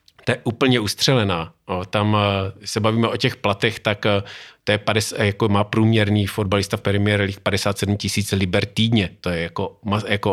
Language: Czech